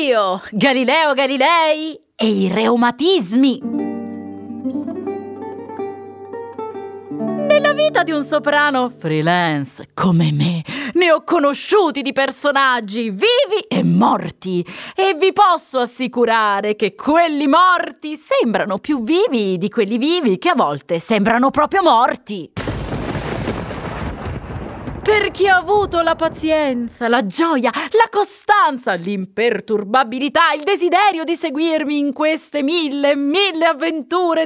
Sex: female